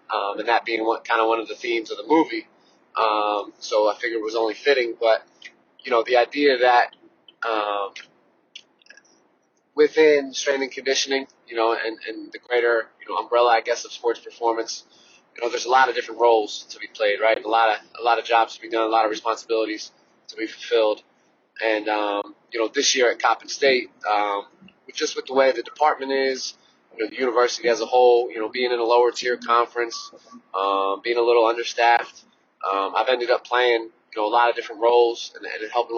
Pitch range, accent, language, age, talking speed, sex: 110-130 Hz, American, English, 20-39, 210 wpm, male